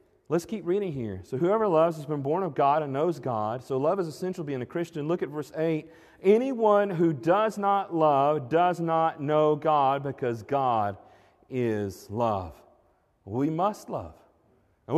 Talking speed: 170 wpm